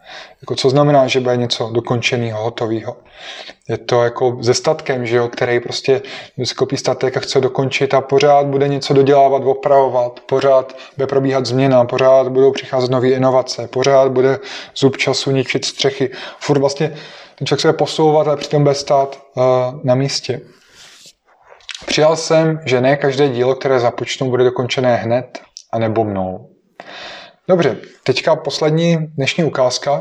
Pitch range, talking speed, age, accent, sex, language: 125-140 Hz, 150 wpm, 20-39, native, male, Czech